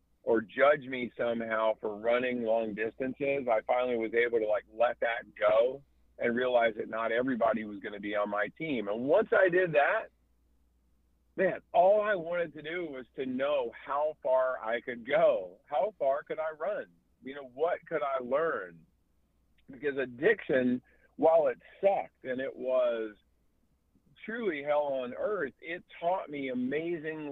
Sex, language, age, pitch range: male, English, 50-69, 110-145 Hz